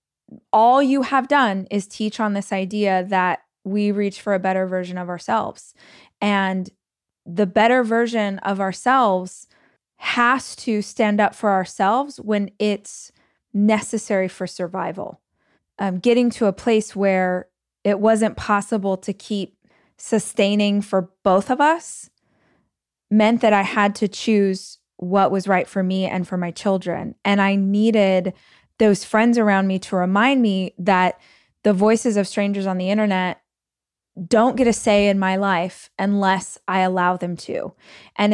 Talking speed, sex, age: 150 wpm, female, 20-39